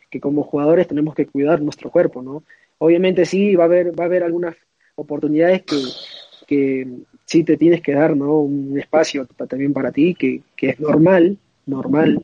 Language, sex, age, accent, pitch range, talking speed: Spanish, male, 20-39, Argentinian, 140-165 Hz, 180 wpm